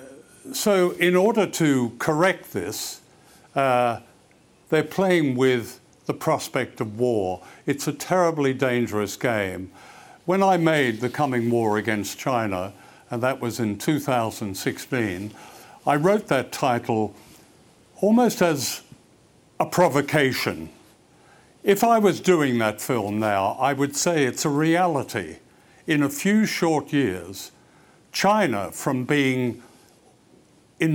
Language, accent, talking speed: English, British, 120 wpm